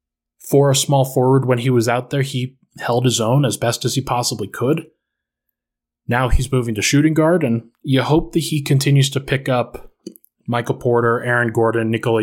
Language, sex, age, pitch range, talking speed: English, male, 20-39, 115-140 Hz, 190 wpm